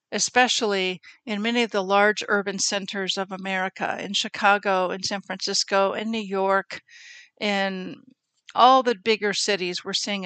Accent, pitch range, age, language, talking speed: American, 195-240 Hz, 50-69, English, 145 wpm